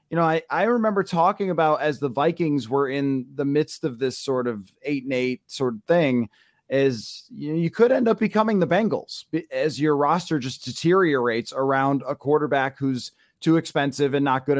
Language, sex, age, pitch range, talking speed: English, male, 30-49, 140-190 Hz, 195 wpm